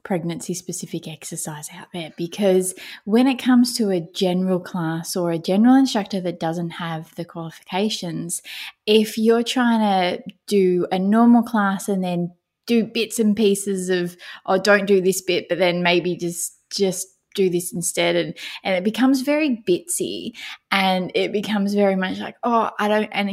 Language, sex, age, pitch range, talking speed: English, female, 20-39, 180-230 Hz, 170 wpm